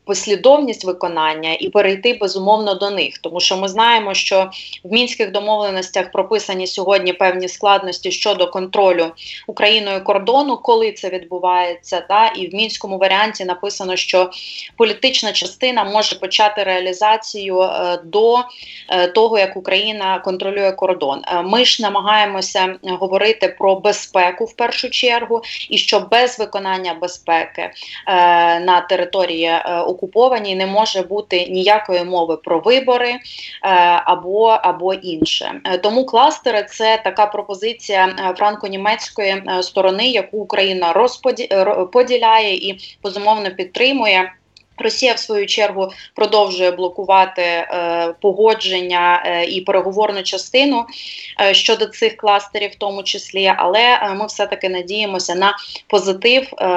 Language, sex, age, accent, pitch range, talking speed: Ukrainian, female, 20-39, native, 185-215 Hz, 120 wpm